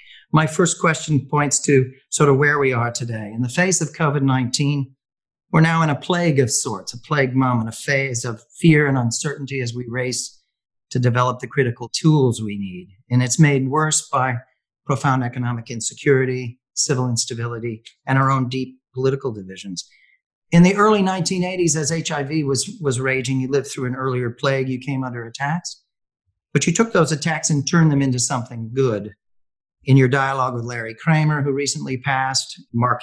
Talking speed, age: 180 wpm, 40-59